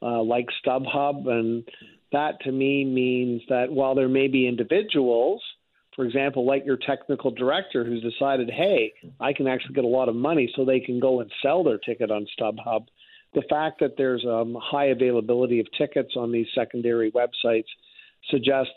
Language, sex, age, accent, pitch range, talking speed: English, male, 50-69, American, 120-140 Hz, 175 wpm